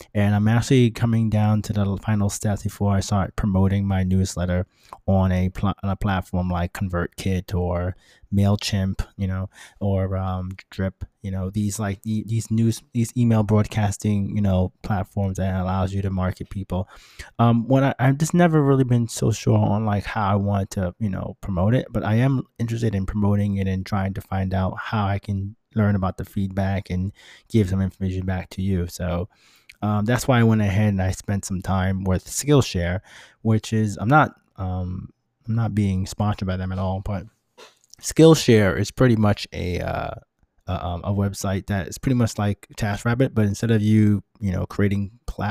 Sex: male